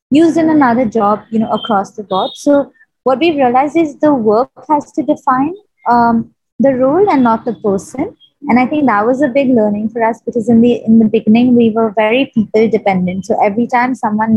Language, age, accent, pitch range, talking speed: English, 20-39, Indian, 210-275 Hz, 215 wpm